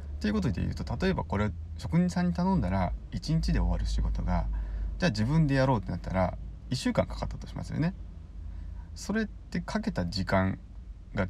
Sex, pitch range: male, 80-115 Hz